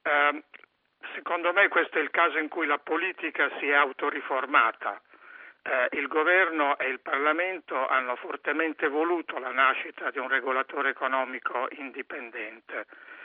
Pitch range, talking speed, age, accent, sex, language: 145-195 Hz, 125 wpm, 60-79, native, male, Italian